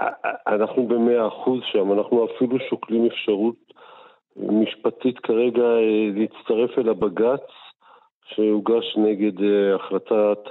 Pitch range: 105-125 Hz